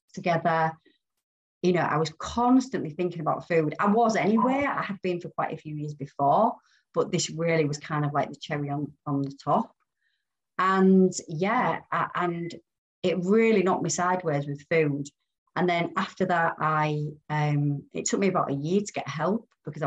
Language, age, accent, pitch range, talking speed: English, 30-49, British, 150-185 Hz, 180 wpm